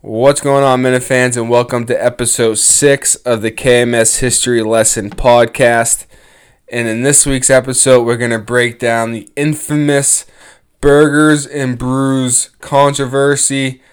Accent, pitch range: American, 115-140 Hz